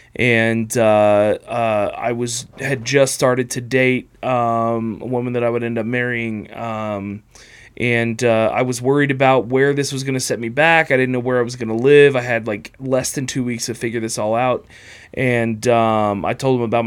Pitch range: 115-130 Hz